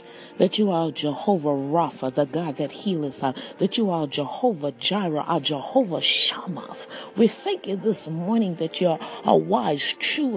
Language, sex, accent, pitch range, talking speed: English, female, American, 160-210 Hz, 170 wpm